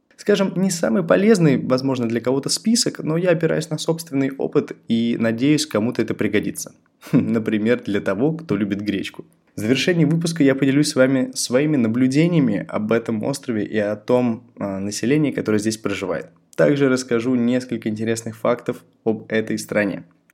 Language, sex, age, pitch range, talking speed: Russian, male, 20-39, 110-145 Hz, 155 wpm